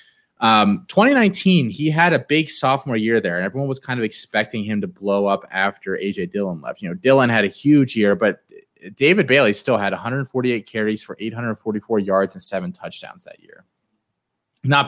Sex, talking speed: male, 185 wpm